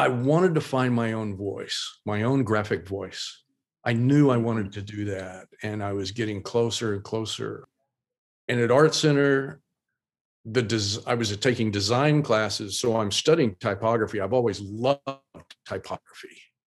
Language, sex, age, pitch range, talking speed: English, male, 50-69, 105-130 Hz, 160 wpm